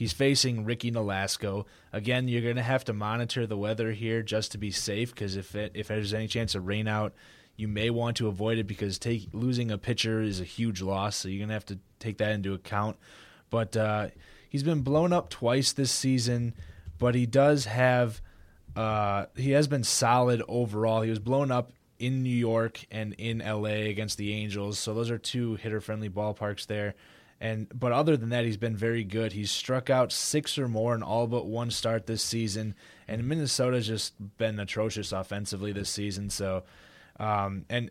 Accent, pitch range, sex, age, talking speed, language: American, 105-125 Hz, male, 20-39, 200 wpm, English